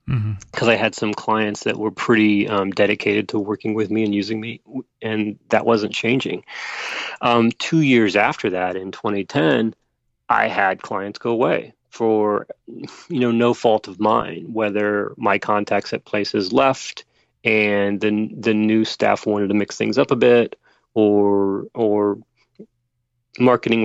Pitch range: 105-120 Hz